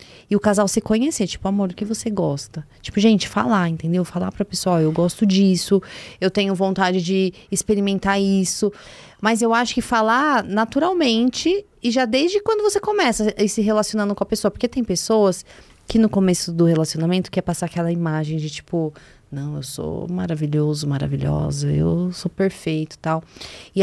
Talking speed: 175 wpm